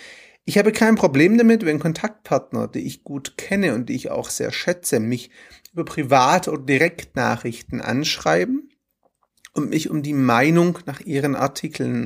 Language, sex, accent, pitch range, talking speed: German, male, German, 140-220 Hz, 155 wpm